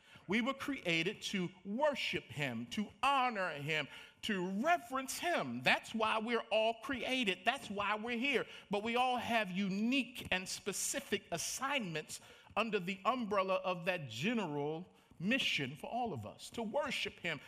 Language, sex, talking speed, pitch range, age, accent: English, male, 150 wpm, 165-235 Hz, 50-69, American